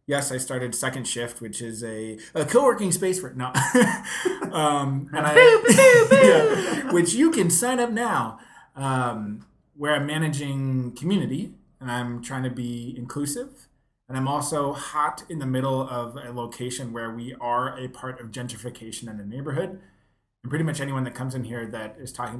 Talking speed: 170 wpm